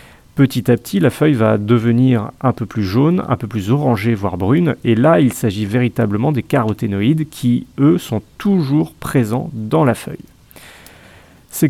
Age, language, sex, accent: 30-49, French, male, French